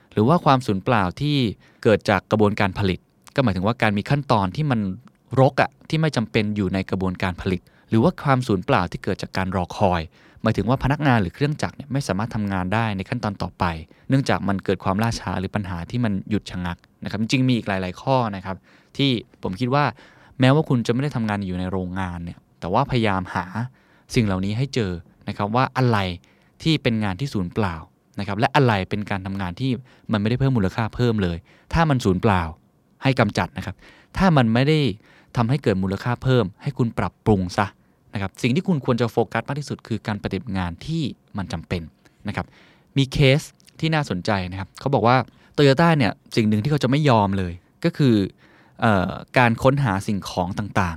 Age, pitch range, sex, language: 20-39, 95-130 Hz, male, Thai